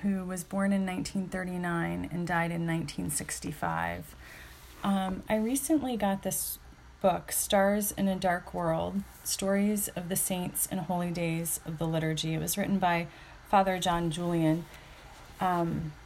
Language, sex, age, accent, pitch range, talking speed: English, female, 30-49, American, 165-205 Hz, 140 wpm